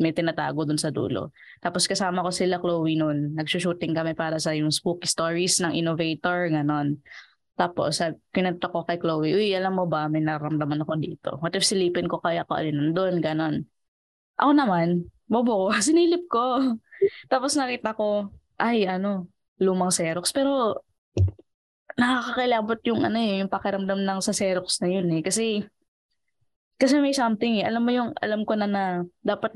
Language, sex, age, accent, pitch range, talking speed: Filipino, female, 20-39, native, 165-220 Hz, 160 wpm